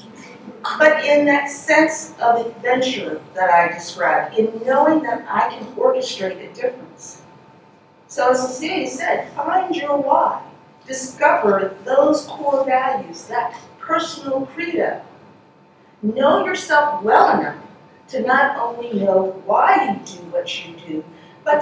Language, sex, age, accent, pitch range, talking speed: English, female, 50-69, American, 210-290 Hz, 130 wpm